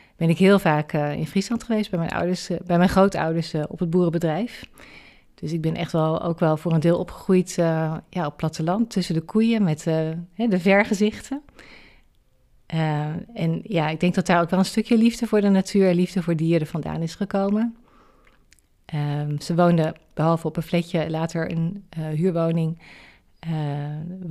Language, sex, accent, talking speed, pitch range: Dutch, female, Dutch, 185 wpm, 160-185 Hz